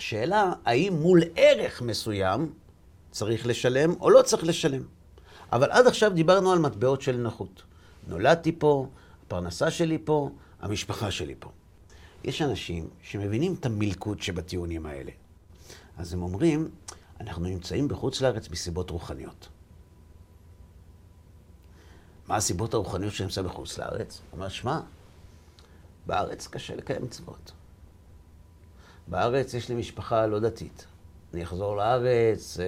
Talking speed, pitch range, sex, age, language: 120 wpm, 85-110 Hz, male, 50-69, Hebrew